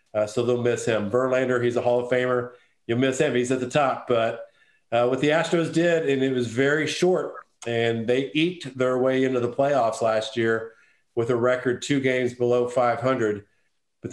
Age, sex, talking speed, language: 50-69, male, 200 wpm, English